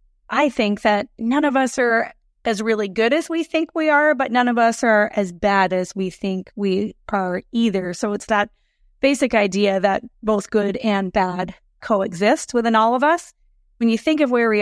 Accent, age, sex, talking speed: American, 20-39, female, 195 wpm